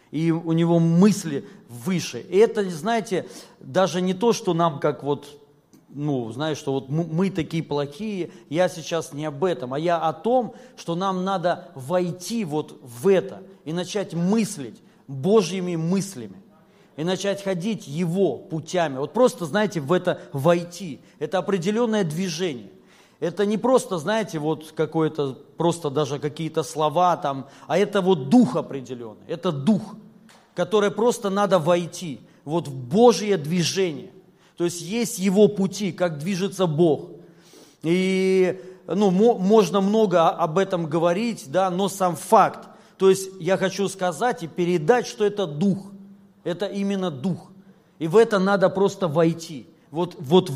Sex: male